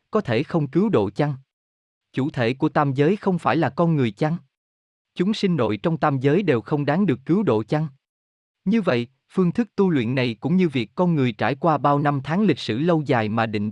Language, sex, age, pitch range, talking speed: Vietnamese, male, 20-39, 115-170 Hz, 230 wpm